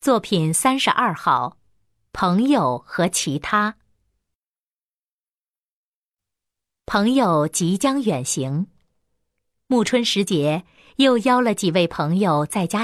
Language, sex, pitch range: Chinese, female, 150-230 Hz